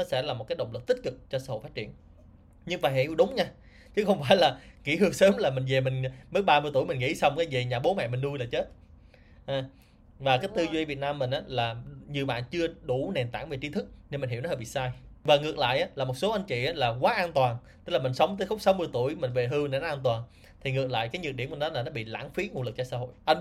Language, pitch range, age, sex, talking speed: Vietnamese, 125-165 Hz, 20-39, male, 295 wpm